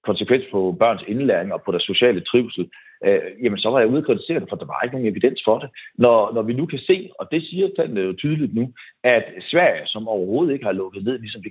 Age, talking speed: 40-59, 250 wpm